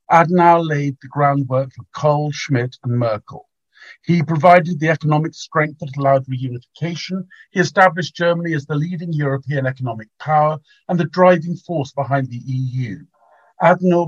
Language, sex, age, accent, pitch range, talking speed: English, male, 50-69, British, 130-170 Hz, 145 wpm